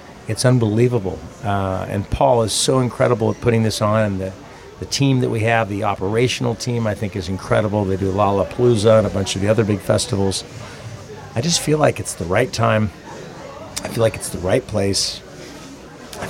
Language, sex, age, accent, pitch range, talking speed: English, male, 40-59, American, 105-120 Hz, 195 wpm